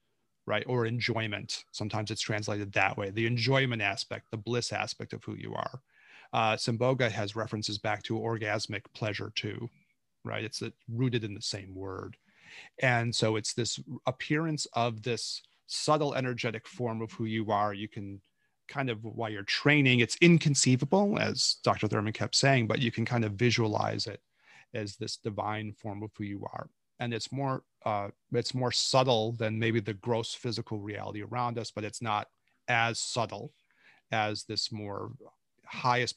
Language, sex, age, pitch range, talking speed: English, male, 30-49, 105-120 Hz, 170 wpm